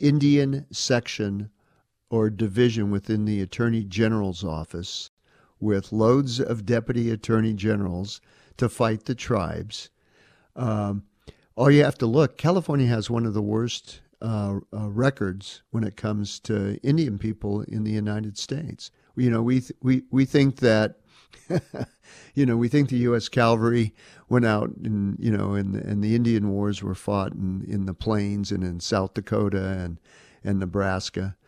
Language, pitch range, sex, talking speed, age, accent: English, 100-125 Hz, male, 155 wpm, 50-69, American